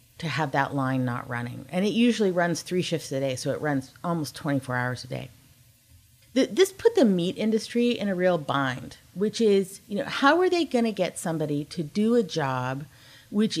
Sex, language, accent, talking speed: female, English, American, 205 wpm